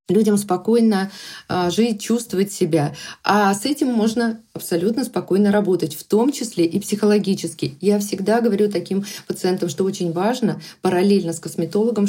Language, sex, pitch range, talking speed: Russian, female, 175-230 Hz, 140 wpm